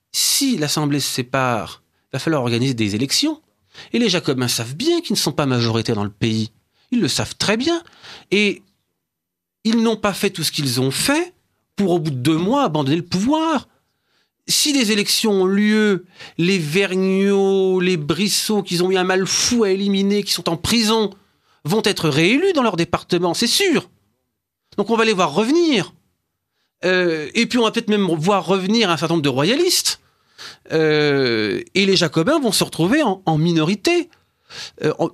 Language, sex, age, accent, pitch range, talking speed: French, male, 40-59, French, 145-225 Hz, 185 wpm